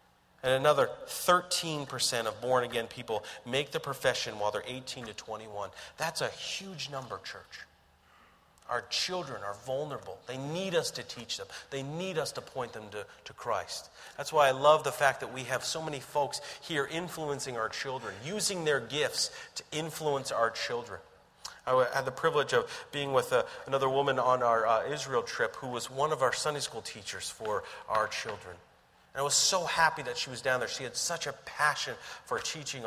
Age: 40-59